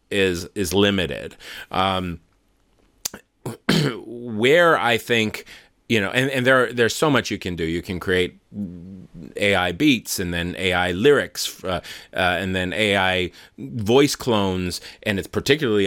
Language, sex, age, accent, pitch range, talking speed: English, male, 30-49, American, 90-105 Hz, 145 wpm